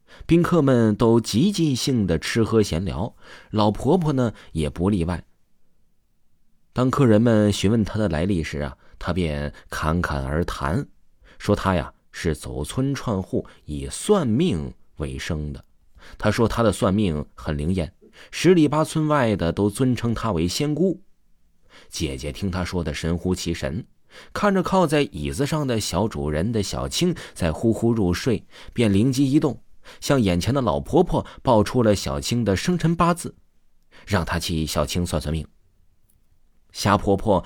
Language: Chinese